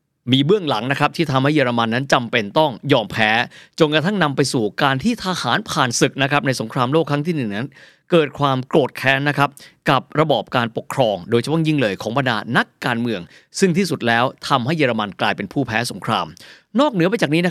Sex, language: male, Thai